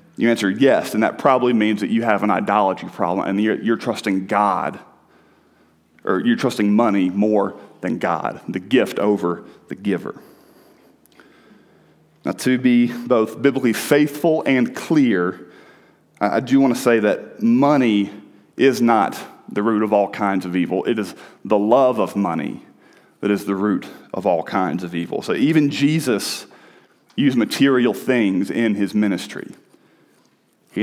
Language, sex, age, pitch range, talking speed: English, male, 40-59, 100-125 Hz, 155 wpm